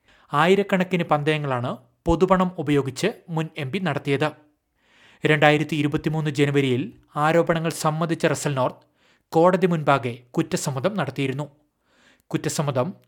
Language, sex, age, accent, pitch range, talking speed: Malayalam, male, 30-49, native, 140-170 Hz, 85 wpm